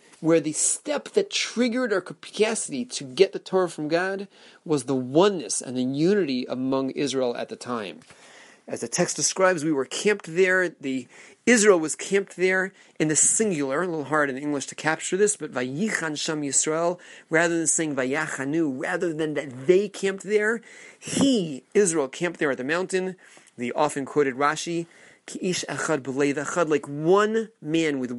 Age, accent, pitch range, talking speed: 30-49, American, 140-190 Hz, 165 wpm